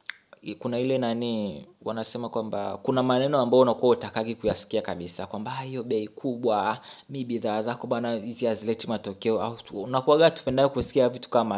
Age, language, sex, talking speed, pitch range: 20-39, Swahili, male, 145 wpm, 105-125 Hz